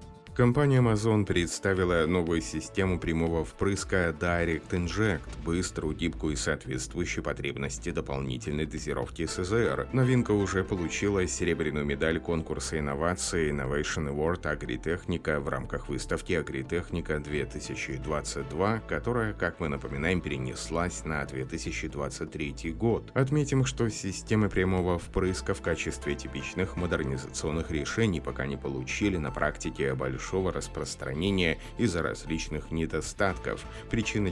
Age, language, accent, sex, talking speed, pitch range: 30-49, Russian, native, male, 110 wpm, 75-95 Hz